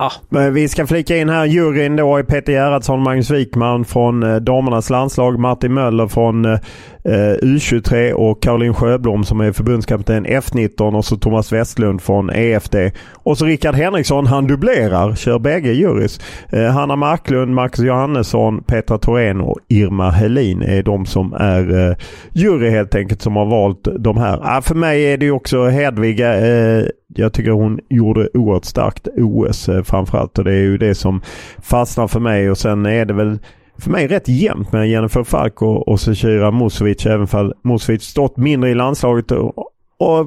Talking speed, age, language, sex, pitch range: 170 wpm, 30-49, English, male, 105-130 Hz